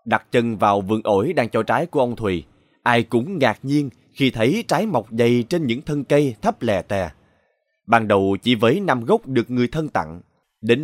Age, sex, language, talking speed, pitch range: 20-39, male, Vietnamese, 210 wpm, 110-150 Hz